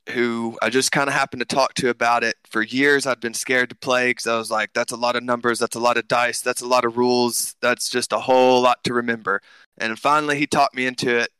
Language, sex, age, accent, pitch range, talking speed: English, male, 20-39, American, 110-130 Hz, 275 wpm